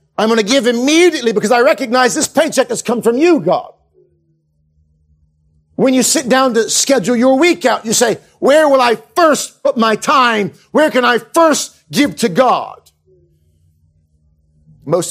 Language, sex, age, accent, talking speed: English, male, 50-69, American, 165 wpm